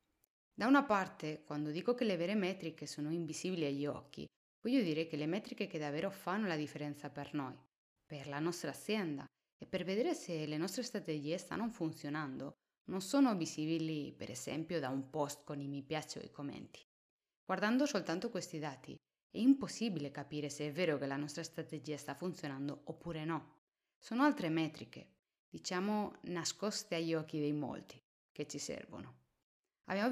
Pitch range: 150-195 Hz